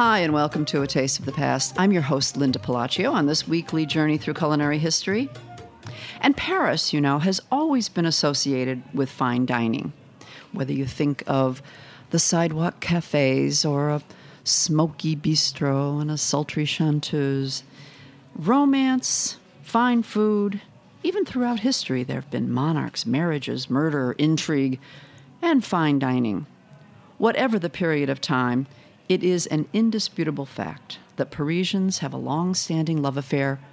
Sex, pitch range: female, 135-180 Hz